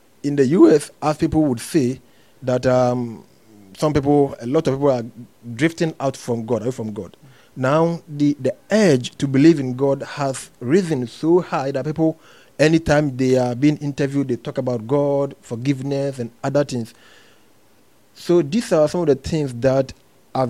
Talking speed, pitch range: 175 wpm, 125-150 Hz